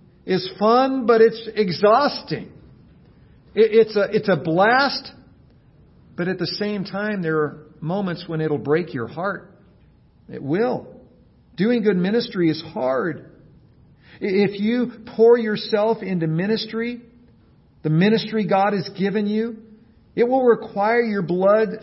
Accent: American